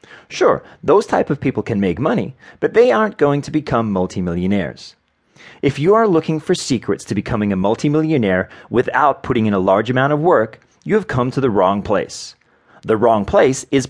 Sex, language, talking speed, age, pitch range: male, English, 190 wpm, 30-49, 110-150 Hz